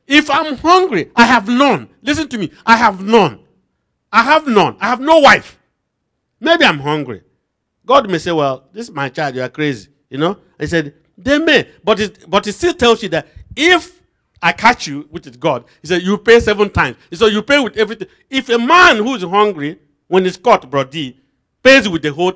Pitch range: 145-235 Hz